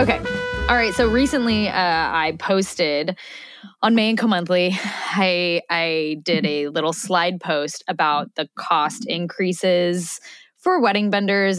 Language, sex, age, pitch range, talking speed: English, female, 10-29, 165-220 Hz, 135 wpm